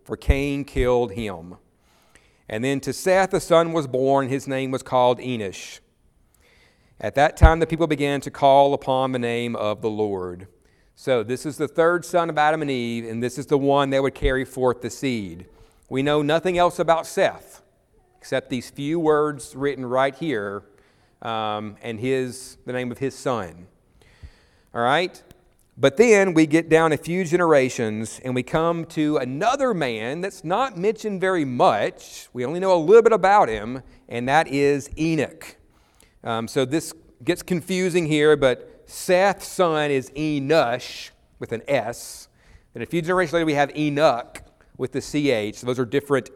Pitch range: 125-160 Hz